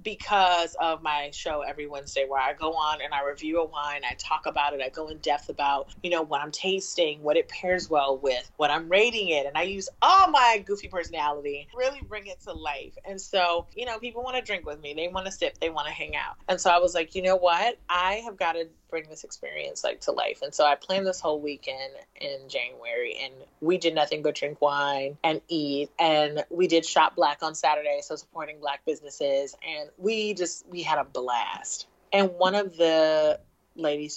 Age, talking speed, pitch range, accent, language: 30-49, 225 wpm, 145-195 Hz, American, English